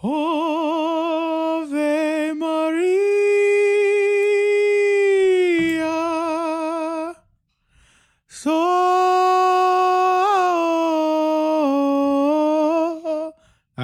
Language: English